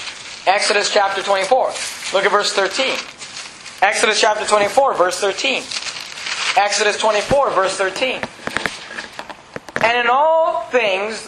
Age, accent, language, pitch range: 30-49, American, English, 205-260 Hz